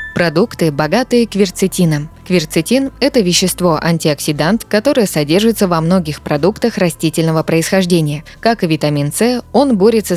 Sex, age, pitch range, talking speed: female, 20-39, 155-205 Hz, 120 wpm